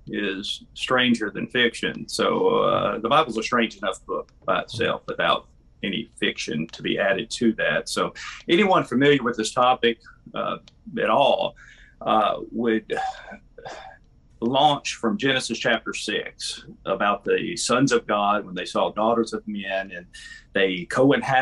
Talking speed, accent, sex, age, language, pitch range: 145 wpm, American, male, 40-59, English, 110-130 Hz